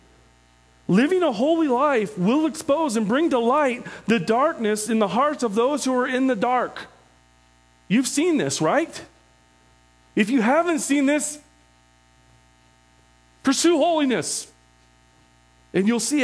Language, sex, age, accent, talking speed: English, male, 40-59, American, 135 wpm